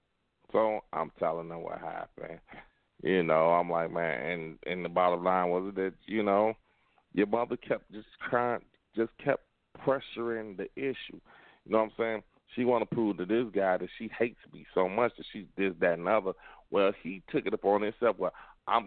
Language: English